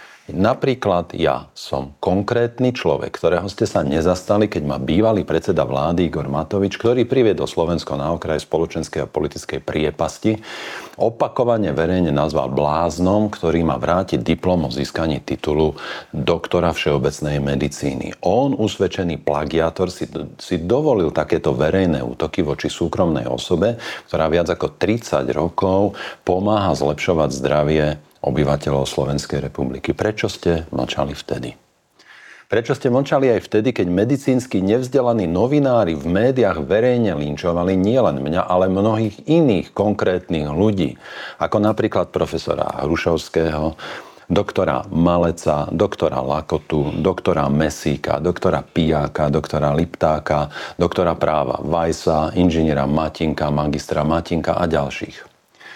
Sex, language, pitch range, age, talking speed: male, Slovak, 75-95 Hz, 40-59, 115 wpm